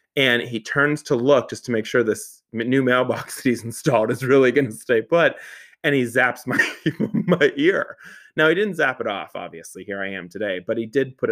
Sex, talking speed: male, 225 wpm